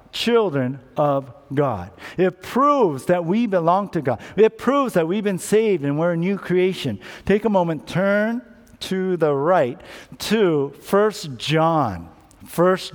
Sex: male